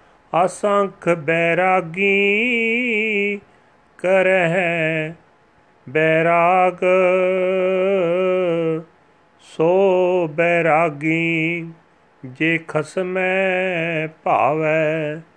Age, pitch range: 30-49, 160-185 Hz